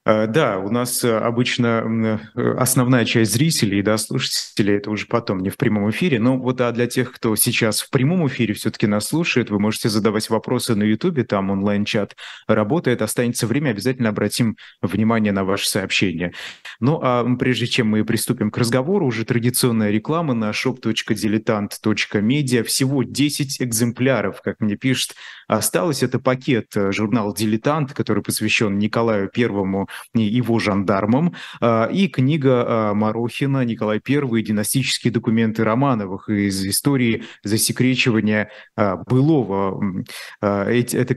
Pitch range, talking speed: 105-130 Hz, 130 wpm